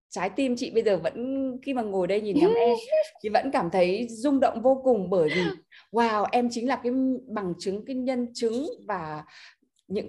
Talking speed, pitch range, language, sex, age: 200 wpm, 200-260 Hz, Vietnamese, female, 20-39